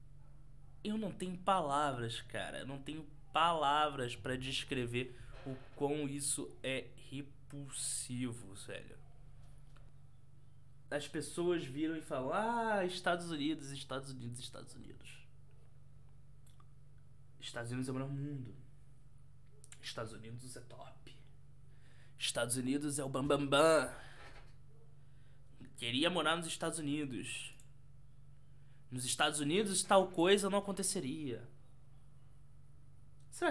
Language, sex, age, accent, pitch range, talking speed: Portuguese, male, 20-39, Brazilian, 130-145 Hz, 100 wpm